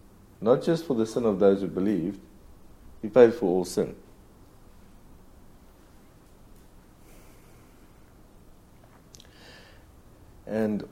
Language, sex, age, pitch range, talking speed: English, male, 50-69, 95-105 Hz, 80 wpm